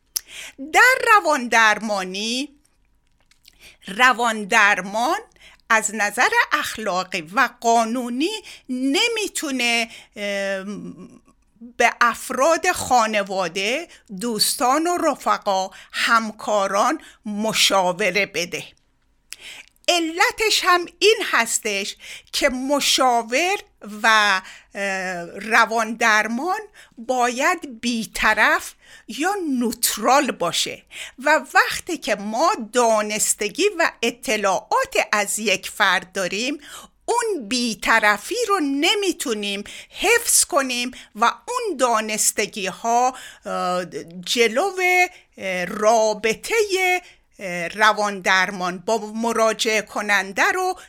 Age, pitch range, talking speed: 50-69, 210-325 Hz, 70 wpm